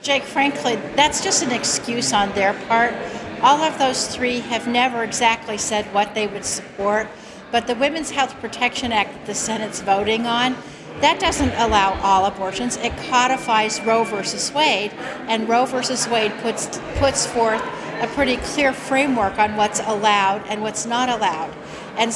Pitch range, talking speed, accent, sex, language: 215-270 Hz, 165 wpm, American, female, English